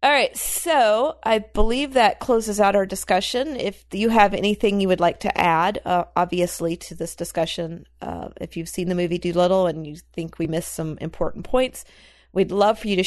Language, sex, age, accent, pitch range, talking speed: English, female, 40-59, American, 170-205 Hz, 200 wpm